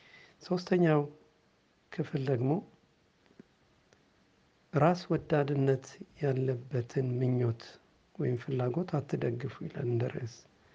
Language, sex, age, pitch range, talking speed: Amharic, male, 60-79, 135-160 Hz, 65 wpm